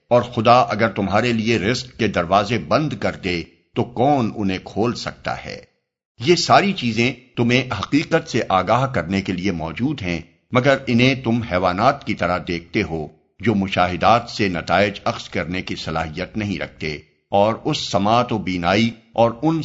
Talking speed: 165 wpm